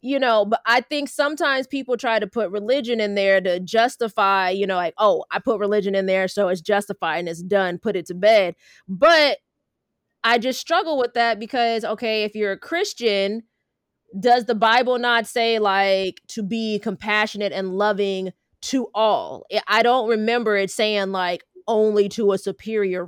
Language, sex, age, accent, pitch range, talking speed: English, female, 20-39, American, 195-240 Hz, 180 wpm